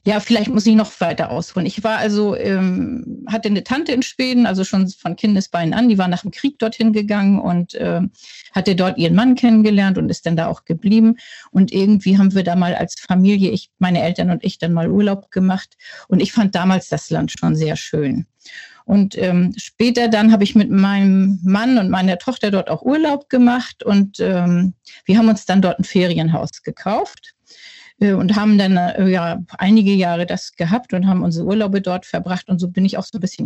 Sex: female